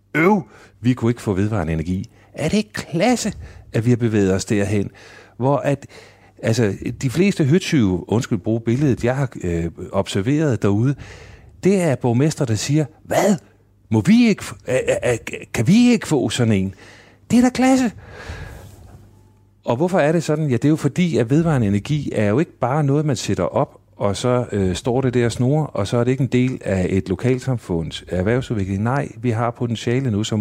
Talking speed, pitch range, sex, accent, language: 195 wpm, 100-130 Hz, male, native, Danish